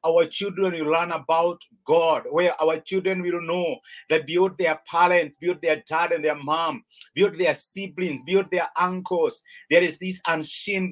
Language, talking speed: English, 170 wpm